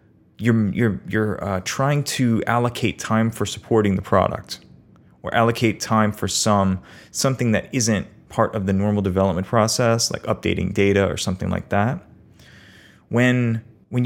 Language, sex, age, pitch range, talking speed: English, male, 30-49, 100-120 Hz, 150 wpm